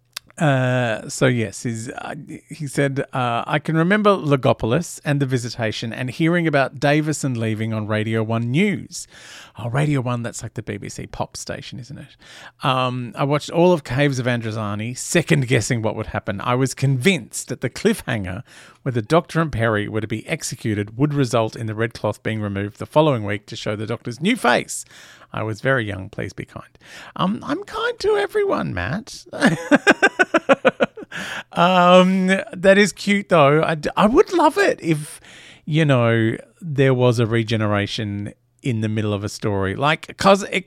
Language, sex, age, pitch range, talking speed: English, male, 40-59, 120-170 Hz, 175 wpm